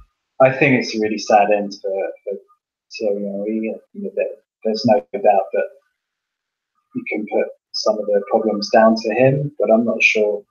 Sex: male